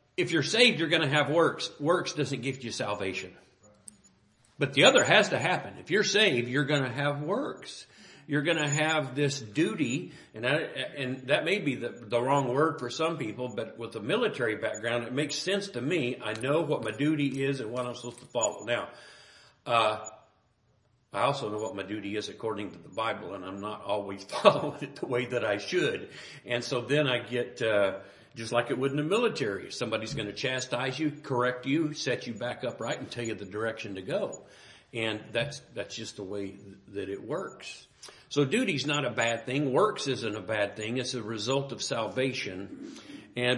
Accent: American